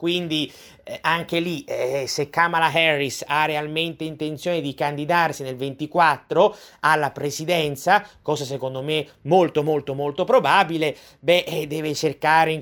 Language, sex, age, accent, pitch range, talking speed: Italian, male, 30-49, native, 135-160 Hz, 130 wpm